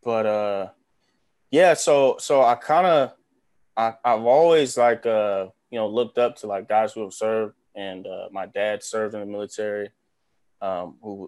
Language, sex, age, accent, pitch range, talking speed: English, male, 20-39, American, 105-120 Hz, 170 wpm